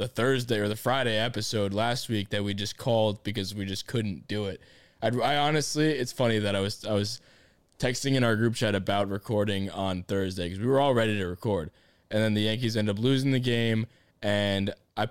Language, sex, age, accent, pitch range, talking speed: English, male, 20-39, American, 100-130 Hz, 220 wpm